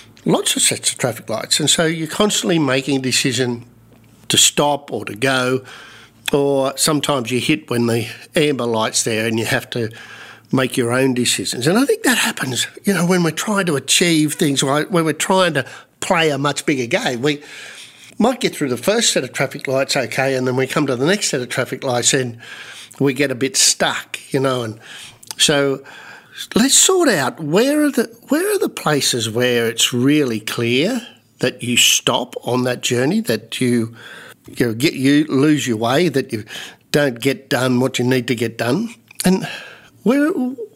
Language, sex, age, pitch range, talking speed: English, male, 50-69, 125-165 Hz, 195 wpm